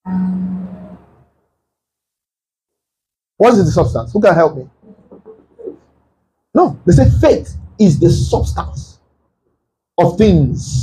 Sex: male